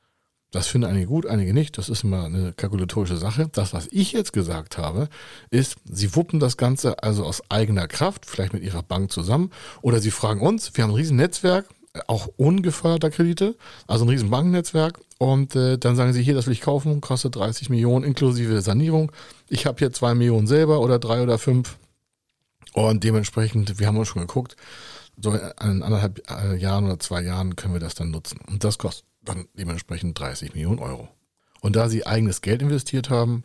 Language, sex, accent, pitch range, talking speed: German, male, German, 95-135 Hz, 190 wpm